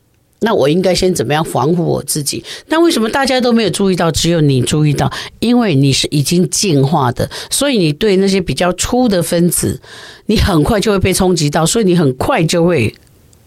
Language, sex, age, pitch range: Chinese, female, 50-69, 140-190 Hz